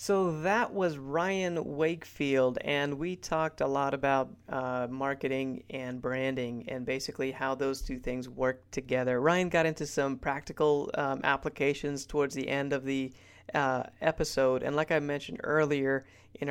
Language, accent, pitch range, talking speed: English, American, 130-150 Hz, 155 wpm